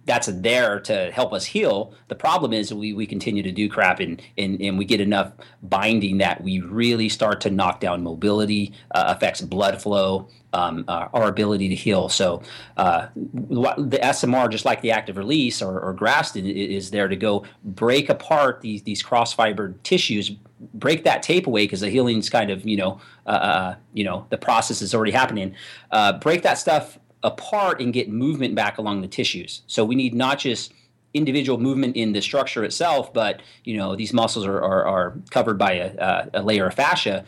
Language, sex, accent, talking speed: English, male, American, 195 wpm